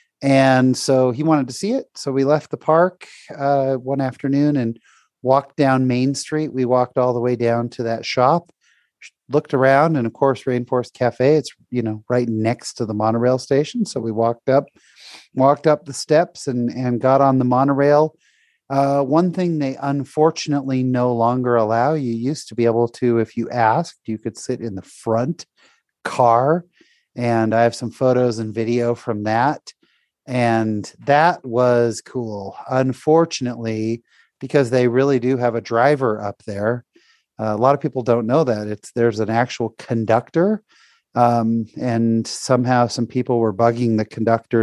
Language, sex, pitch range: English, male, 115-140 Hz